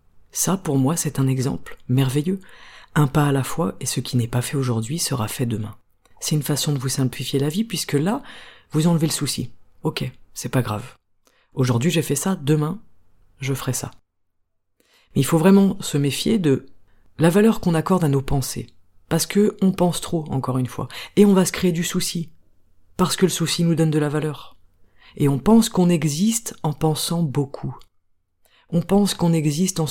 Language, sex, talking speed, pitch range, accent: French, female, 200 wpm, 130-175 Hz, French